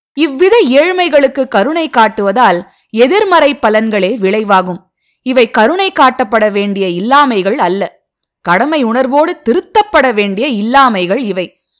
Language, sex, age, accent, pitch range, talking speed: Tamil, female, 20-39, native, 200-310 Hz, 95 wpm